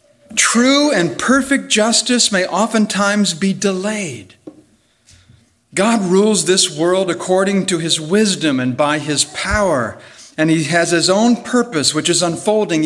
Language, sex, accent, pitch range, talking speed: English, male, American, 140-210 Hz, 135 wpm